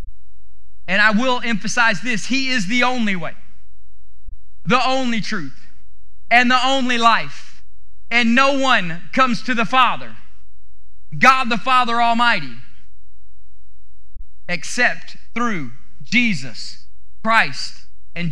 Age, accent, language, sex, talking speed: 30-49, American, English, male, 110 wpm